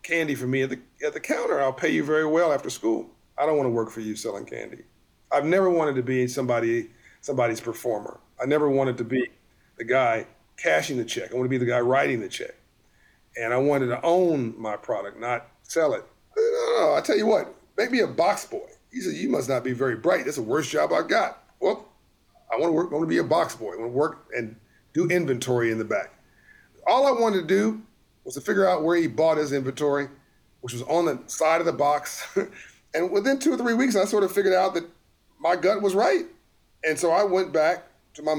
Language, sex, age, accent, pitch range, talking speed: English, male, 40-59, American, 130-180 Hz, 245 wpm